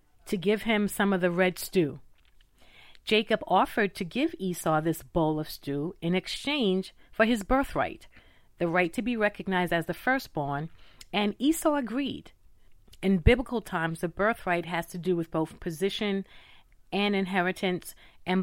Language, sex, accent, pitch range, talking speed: English, female, American, 165-225 Hz, 155 wpm